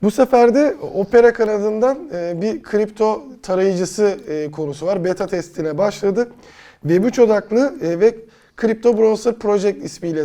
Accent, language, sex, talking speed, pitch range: native, Turkish, male, 115 wpm, 160-210 Hz